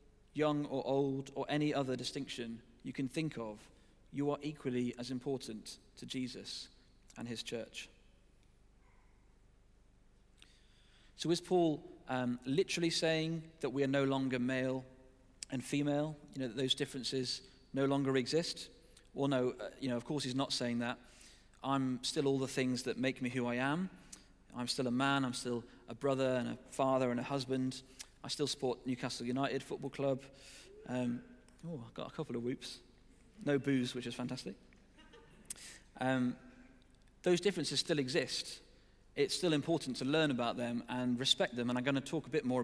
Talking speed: 170 wpm